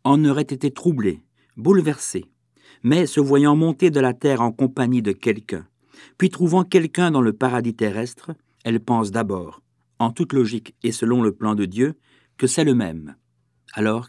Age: 50-69